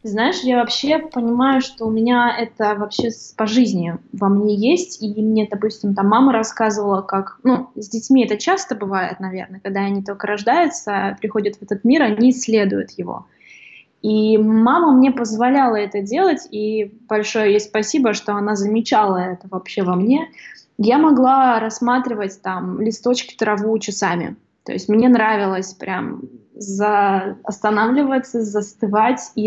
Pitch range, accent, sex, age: 205-245 Hz, native, female, 20-39